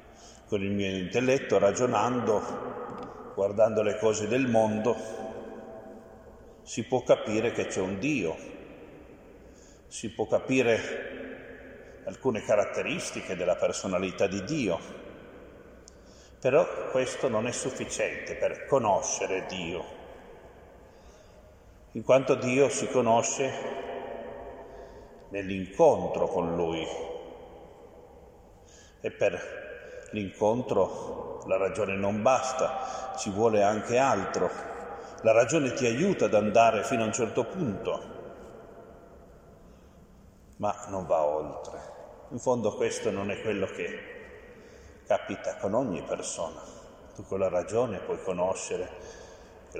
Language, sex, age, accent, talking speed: Italian, male, 50-69, native, 105 wpm